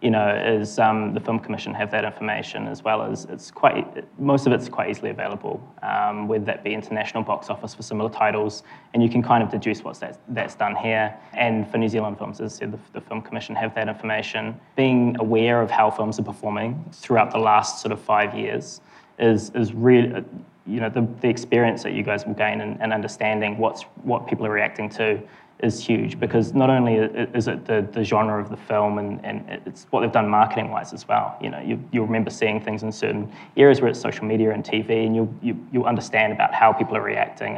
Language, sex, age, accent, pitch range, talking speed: English, male, 20-39, Australian, 105-115 Hz, 225 wpm